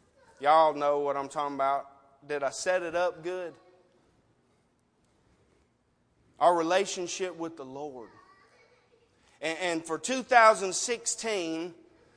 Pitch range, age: 170-215 Hz, 30-49